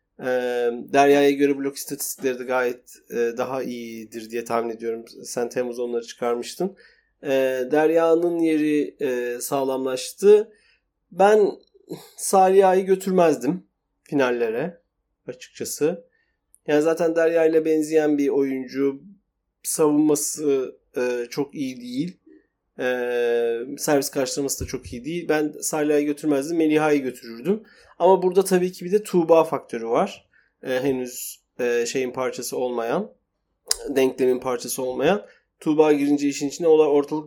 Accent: native